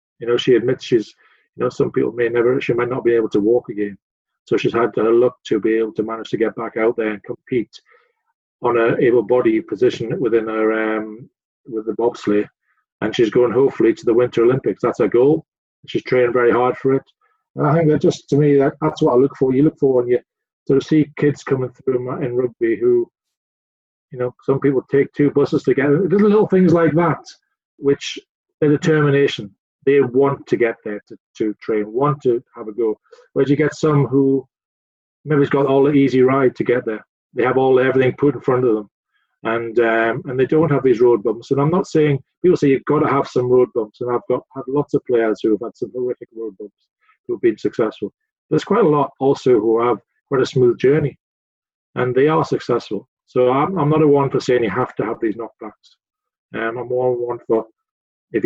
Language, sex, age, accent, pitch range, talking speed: English, male, 40-59, British, 120-165 Hz, 225 wpm